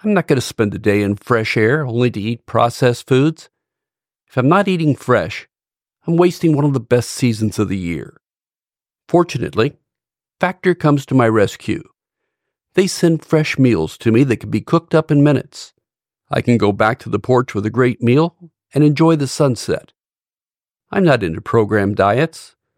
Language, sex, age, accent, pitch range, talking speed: English, male, 50-69, American, 115-155 Hz, 180 wpm